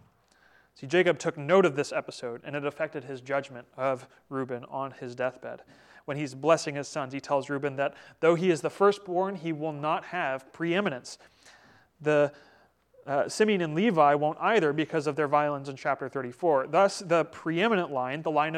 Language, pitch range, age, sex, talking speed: English, 135-165 Hz, 30-49, male, 180 wpm